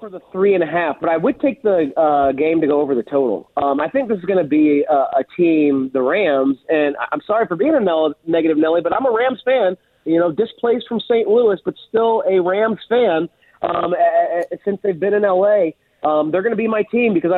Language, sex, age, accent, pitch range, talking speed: English, male, 30-49, American, 155-205 Hz, 250 wpm